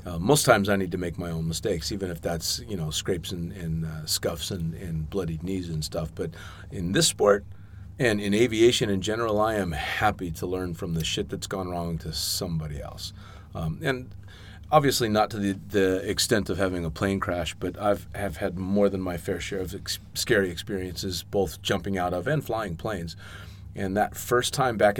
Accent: American